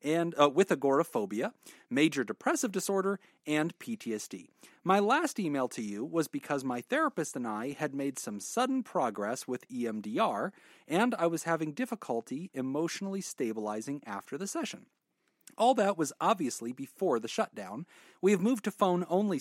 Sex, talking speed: male, 150 wpm